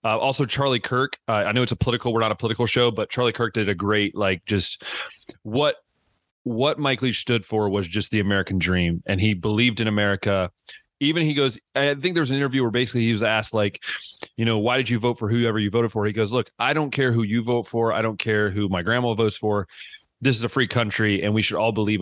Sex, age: male, 30-49